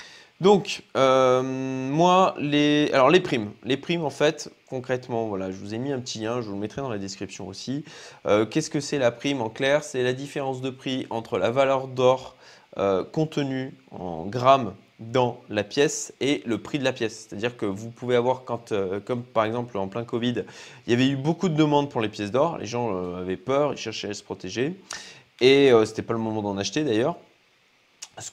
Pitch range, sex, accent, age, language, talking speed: 105-140 Hz, male, French, 20-39, French, 220 wpm